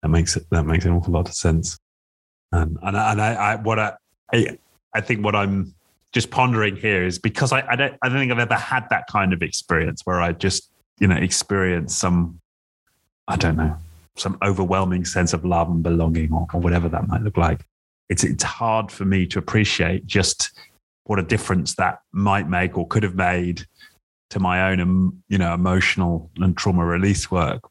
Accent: British